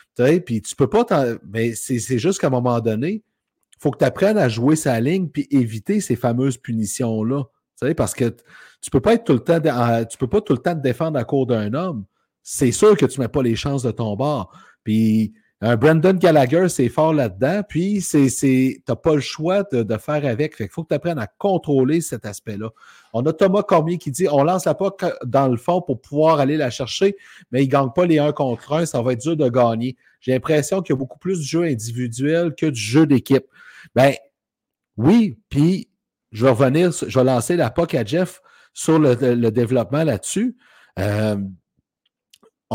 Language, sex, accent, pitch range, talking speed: French, male, Canadian, 125-170 Hz, 220 wpm